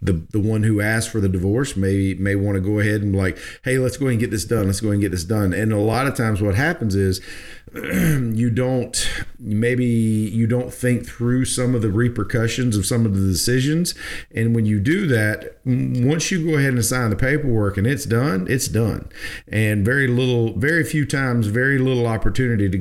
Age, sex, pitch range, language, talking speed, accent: 40-59, male, 100-125 Hz, English, 215 wpm, American